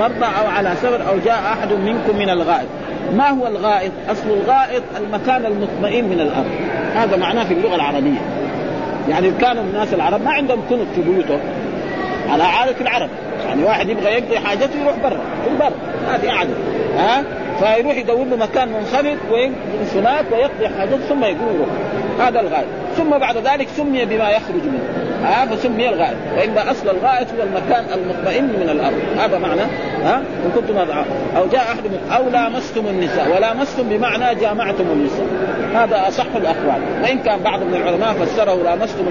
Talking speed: 160 wpm